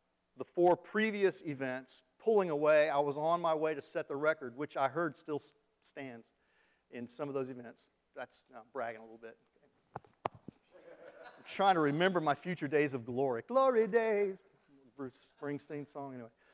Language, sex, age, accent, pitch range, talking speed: English, male, 40-59, American, 135-190 Hz, 165 wpm